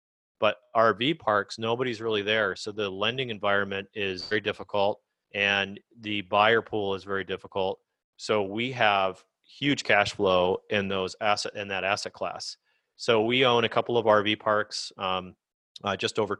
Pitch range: 95-110 Hz